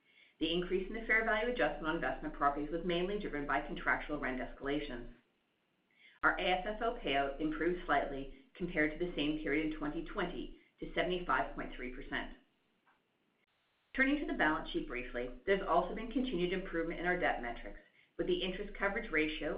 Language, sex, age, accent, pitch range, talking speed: English, female, 40-59, American, 150-195 Hz, 155 wpm